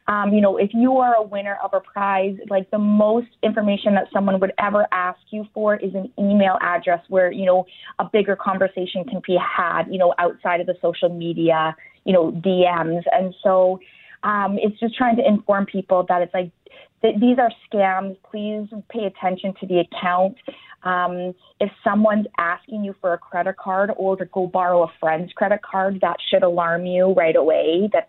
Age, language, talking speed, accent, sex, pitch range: 30-49, English, 195 wpm, American, female, 180-210 Hz